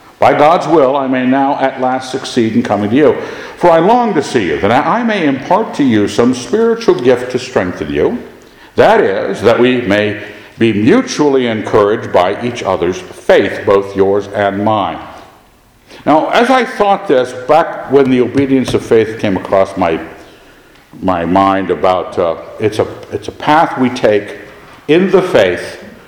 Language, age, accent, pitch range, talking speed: English, 60-79, American, 105-150 Hz, 175 wpm